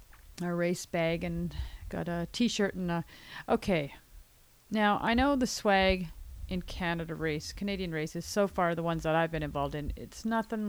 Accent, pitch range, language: American, 165-225 Hz, English